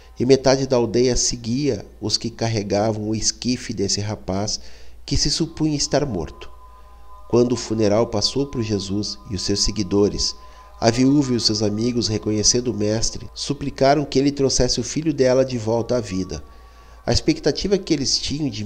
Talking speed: 170 wpm